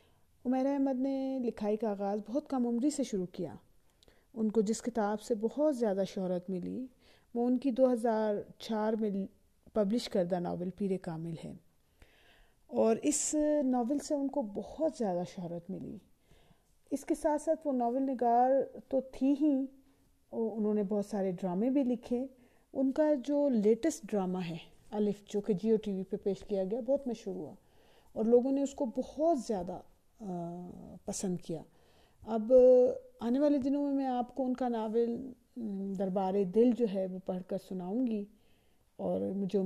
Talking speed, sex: 170 wpm, female